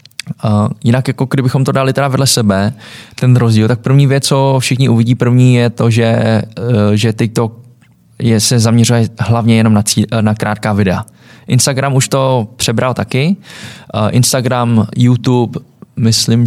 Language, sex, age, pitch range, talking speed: Czech, male, 20-39, 110-130 Hz, 160 wpm